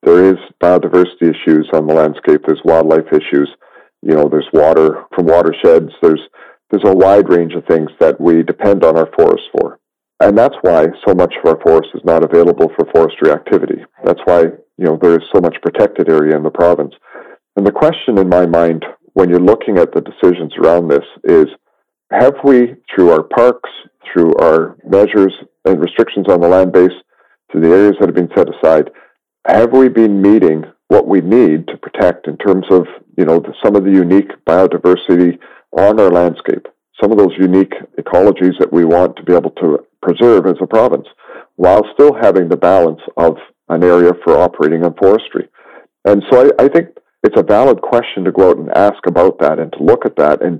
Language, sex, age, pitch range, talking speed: English, male, 40-59, 85-135 Hz, 195 wpm